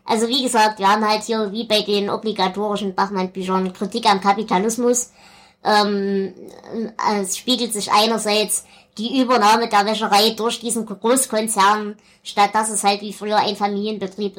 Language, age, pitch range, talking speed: German, 20-39, 195-230 Hz, 150 wpm